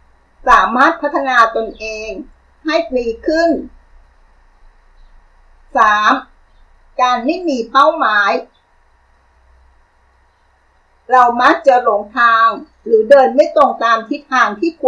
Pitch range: 210-280 Hz